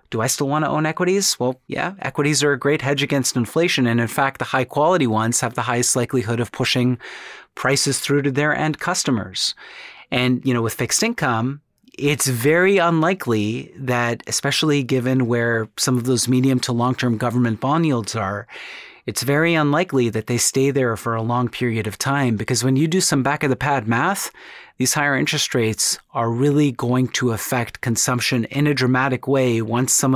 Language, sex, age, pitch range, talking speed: English, male, 30-49, 120-145 Hz, 190 wpm